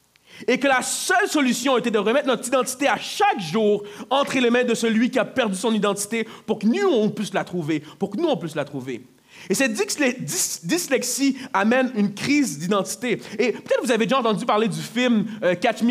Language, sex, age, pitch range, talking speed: French, male, 30-49, 200-255 Hz, 210 wpm